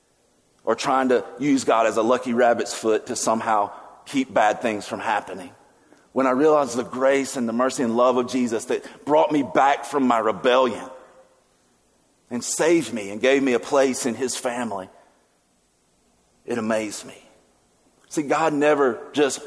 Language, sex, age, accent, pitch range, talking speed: English, male, 40-59, American, 115-145 Hz, 165 wpm